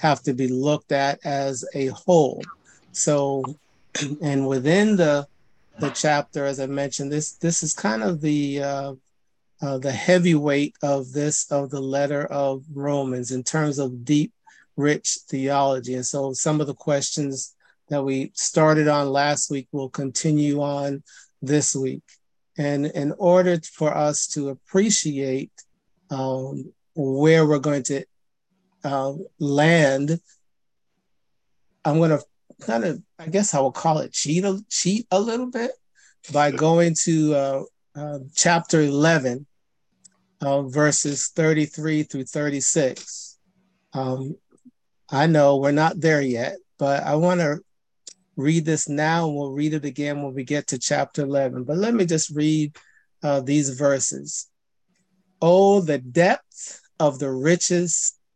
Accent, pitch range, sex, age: American, 140-160 Hz, male, 50-69